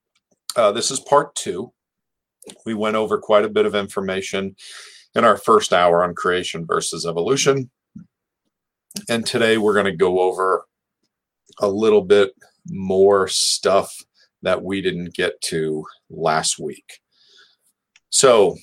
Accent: American